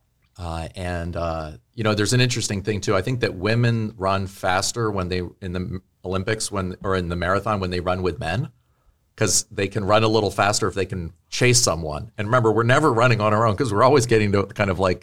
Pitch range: 95-125 Hz